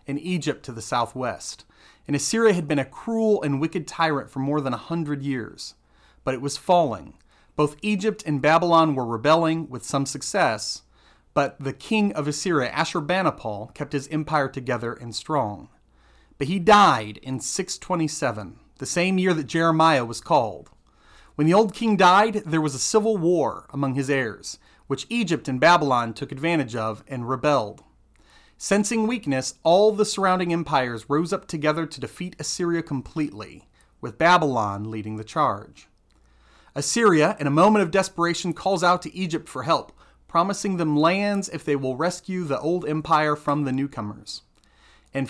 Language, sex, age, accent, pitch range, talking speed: English, male, 30-49, American, 130-180 Hz, 165 wpm